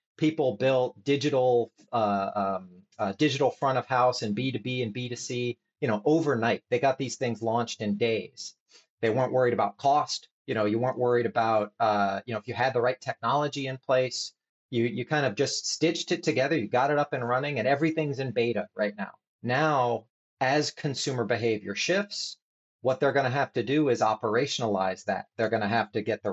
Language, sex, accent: English, male, American